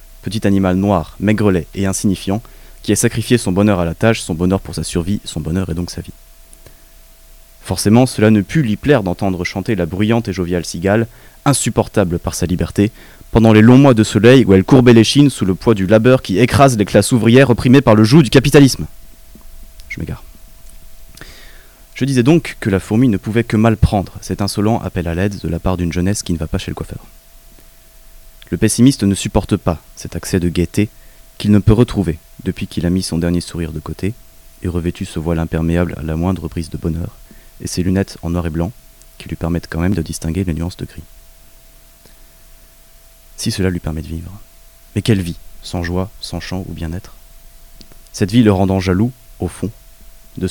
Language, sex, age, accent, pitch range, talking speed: French, male, 20-39, French, 85-110 Hz, 205 wpm